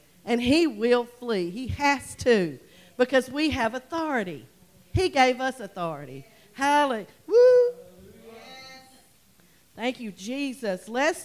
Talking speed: 110 wpm